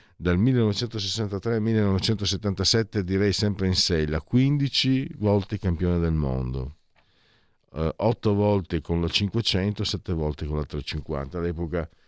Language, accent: Italian, native